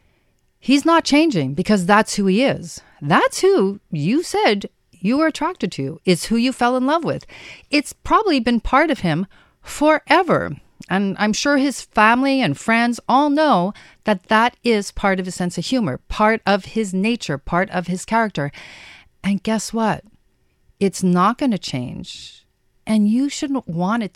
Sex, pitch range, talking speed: female, 190-270 Hz, 170 wpm